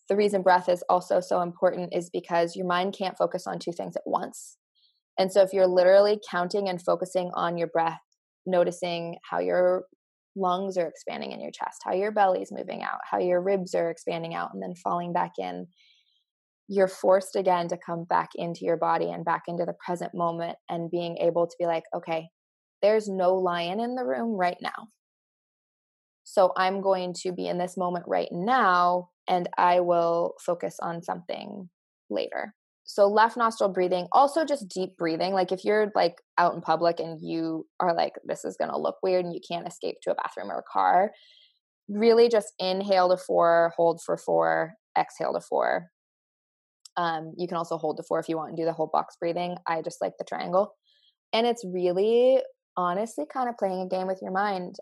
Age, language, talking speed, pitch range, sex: 20-39, English, 195 wpm, 170-195 Hz, female